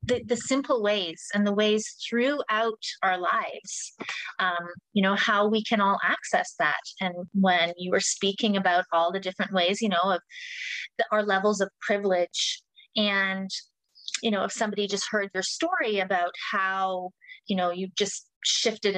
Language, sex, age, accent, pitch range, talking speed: English, female, 30-49, American, 185-220 Hz, 170 wpm